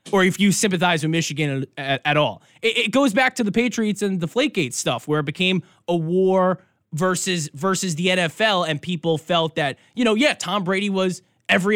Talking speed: 205 wpm